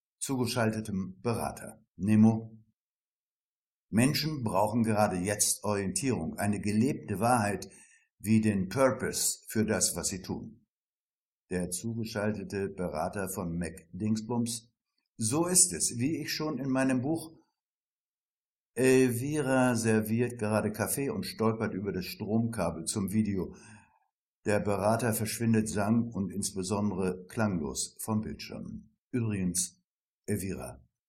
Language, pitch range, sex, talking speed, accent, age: German, 100-120 Hz, male, 110 wpm, German, 60-79